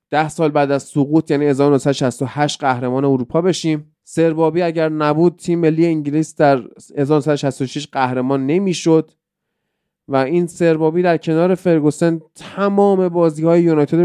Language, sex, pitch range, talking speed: Persian, male, 135-170 Hz, 130 wpm